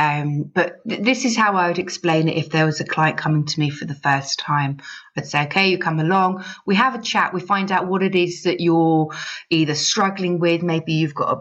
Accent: British